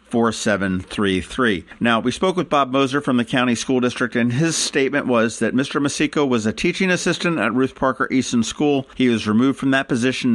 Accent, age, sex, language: American, 50-69, male, English